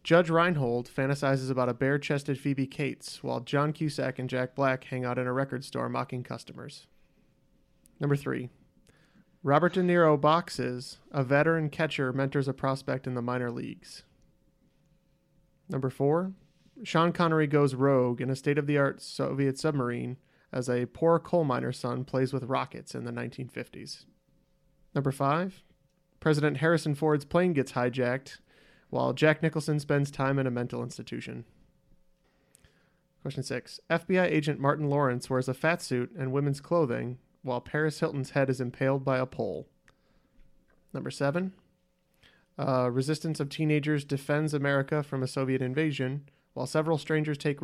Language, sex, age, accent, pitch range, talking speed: English, male, 30-49, American, 130-155 Hz, 145 wpm